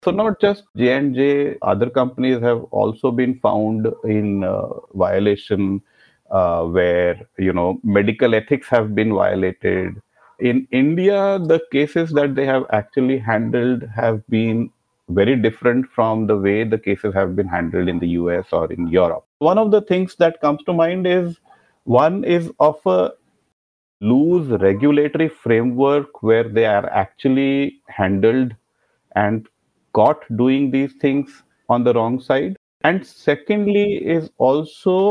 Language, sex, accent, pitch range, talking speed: English, male, Indian, 110-155 Hz, 145 wpm